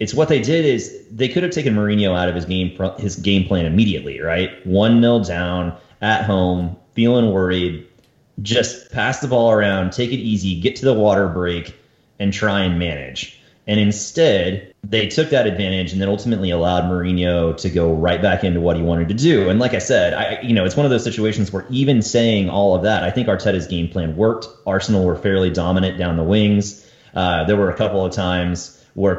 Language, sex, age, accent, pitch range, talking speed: English, male, 30-49, American, 90-110 Hz, 210 wpm